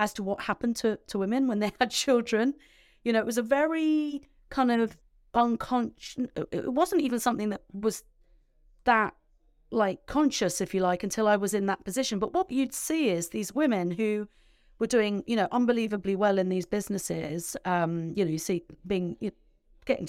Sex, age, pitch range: female, 30-49, 180-235 Hz